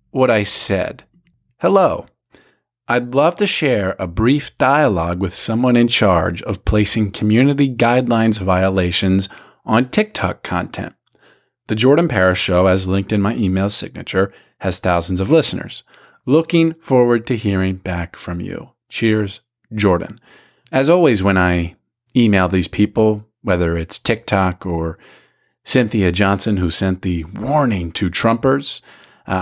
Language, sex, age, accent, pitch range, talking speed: English, male, 40-59, American, 90-115 Hz, 135 wpm